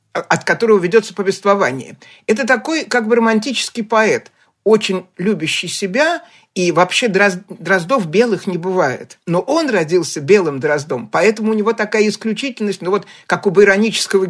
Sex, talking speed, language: male, 150 wpm, Russian